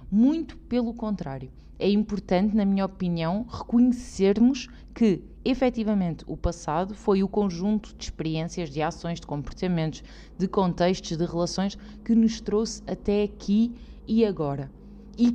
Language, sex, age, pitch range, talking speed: Portuguese, female, 20-39, 170-225 Hz, 135 wpm